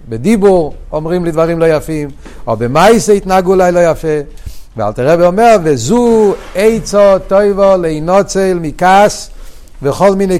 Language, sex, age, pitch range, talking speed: Hebrew, male, 60-79, 135-190 Hz, 135 wpm